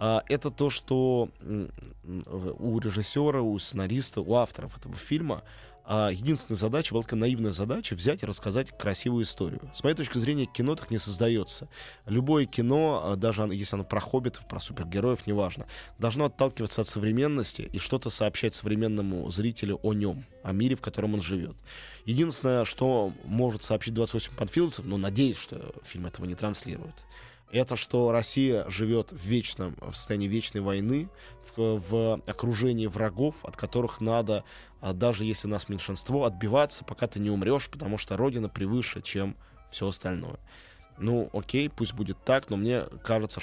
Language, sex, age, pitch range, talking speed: Russian, male, 20-39, 100-125 Hz, 155 wpm